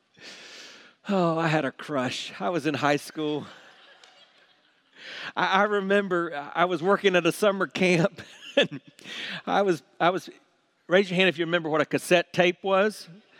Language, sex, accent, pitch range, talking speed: English, male, American, 165-225 Hz, 160 wpm